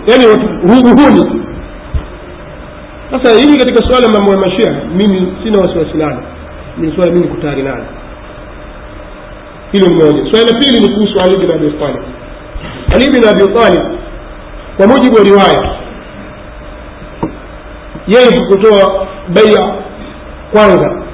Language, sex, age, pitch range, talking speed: Swahili, male, 40-59, 175-220 Hz, 125 wpm